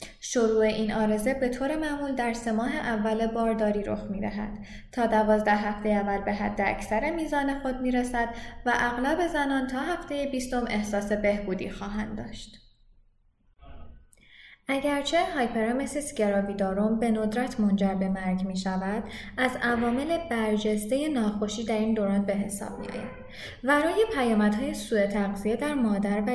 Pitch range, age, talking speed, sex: 210-245 Hz, 10-29, 140 wpm, female